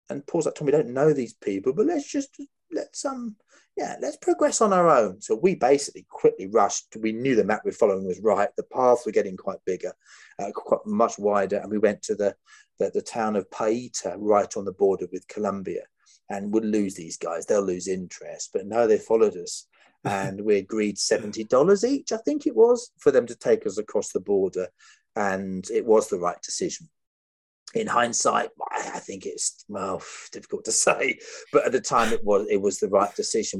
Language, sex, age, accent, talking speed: English, male, 30-49, British, 210 wpm